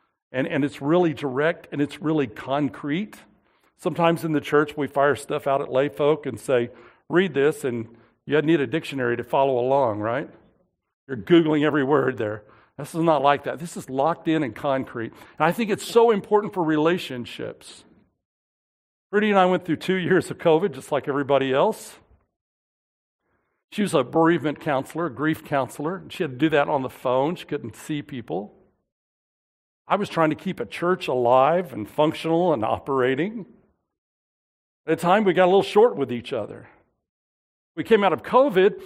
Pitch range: 140-190 Hz